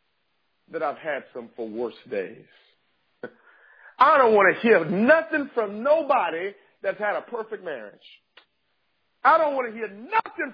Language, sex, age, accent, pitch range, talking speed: English, male, 40-59, American, 230-315 Hz, 150 wpm